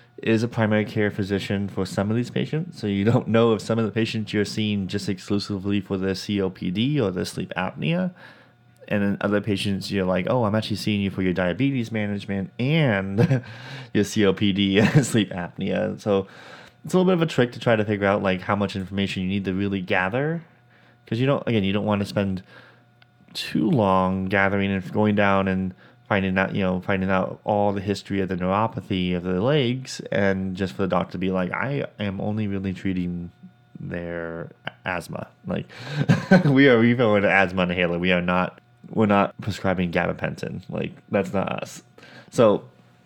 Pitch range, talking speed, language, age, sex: 95-120 Hz, 195 wpm, English, 20-39, male